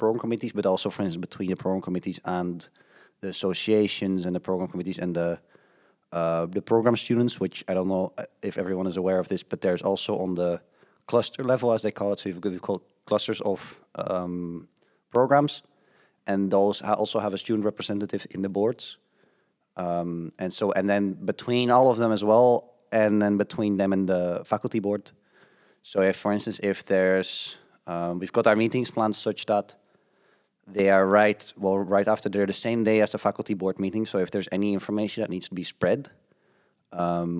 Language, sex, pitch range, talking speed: English, male, 90-105 Hz, 195 wpm